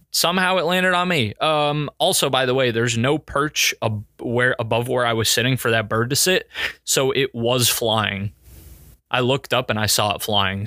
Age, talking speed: 20-39, 210 wpm